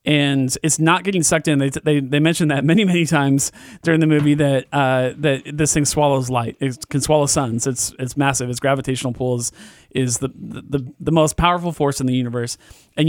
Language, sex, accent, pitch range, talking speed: English, male, American, 130-155 Hz, 210 wpm